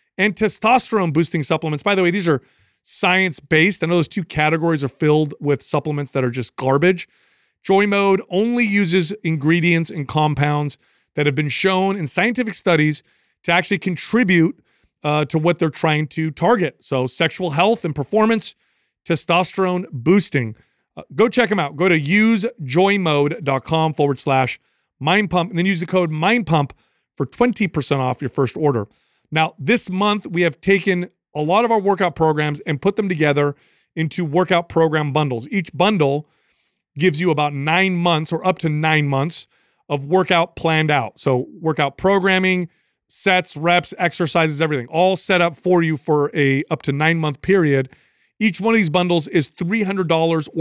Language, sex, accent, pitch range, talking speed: English, male, American, 150-190 Hz, 160 wpm